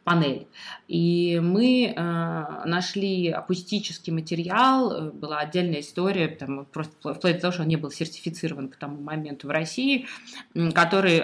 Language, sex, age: Russian, female, 20-39